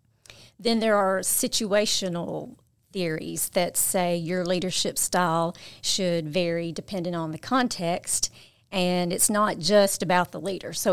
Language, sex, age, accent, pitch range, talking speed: English, female, 40-59, American, 160-185 Hz, 130 wpm